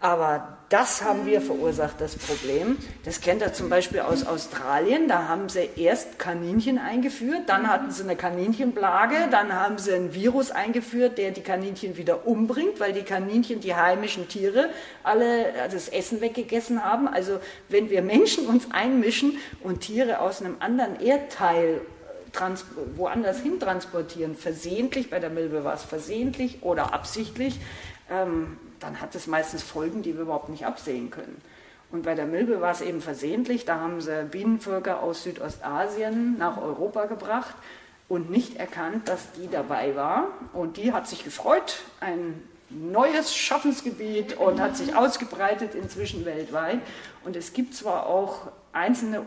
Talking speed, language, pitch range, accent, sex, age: 155 wpm, German, 170-240 Hz, German, female, 40-59